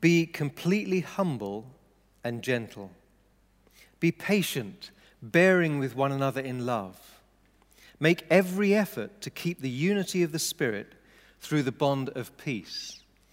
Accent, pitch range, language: British, 120-155 Hz, English